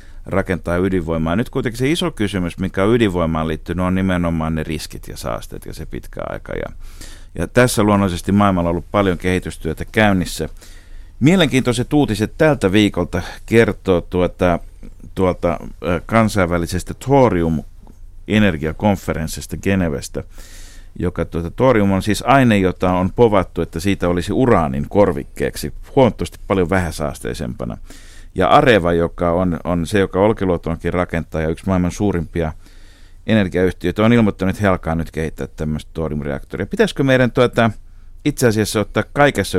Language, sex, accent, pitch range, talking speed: Finnish, male, native, 85-105 Hz, 125 wpm